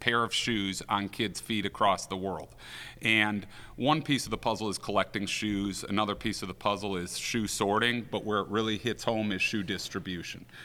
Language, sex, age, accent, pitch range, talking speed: English, male, 40-59, American, 100-115 Hz, 195 wpm